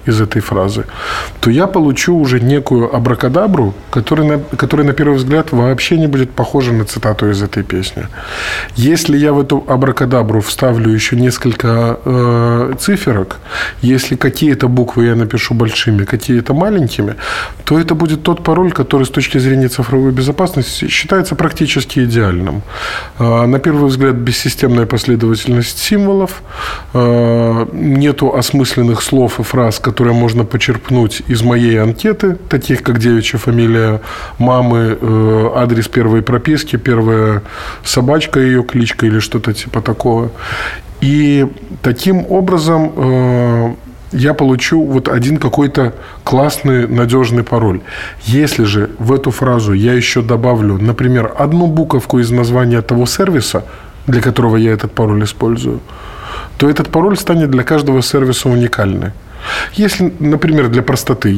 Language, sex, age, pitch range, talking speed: Russian, male, 20-39, 115-140 Hz, 135 wpm